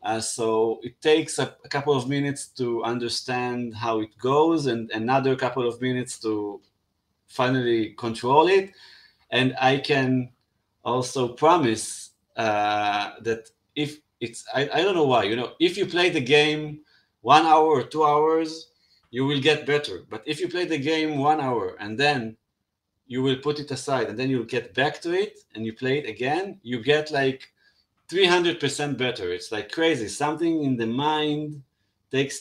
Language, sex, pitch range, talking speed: English, male, 115-150 Hz, 175 wpm